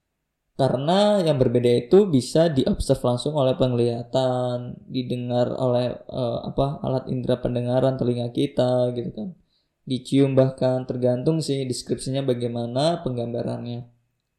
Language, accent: Indonesian, native